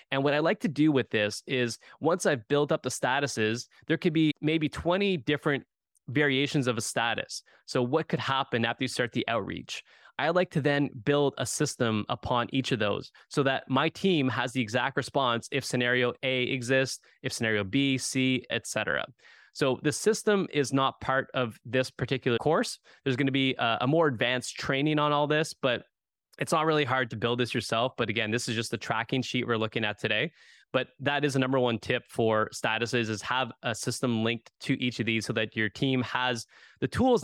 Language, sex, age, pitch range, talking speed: English, male, 20-39, 120-145 Hz, 210 wpm